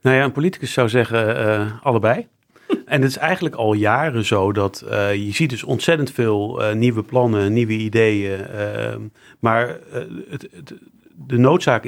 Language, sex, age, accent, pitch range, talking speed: Dutch, male, 40-59, Dutch, 110-135 Hz, 170 wpm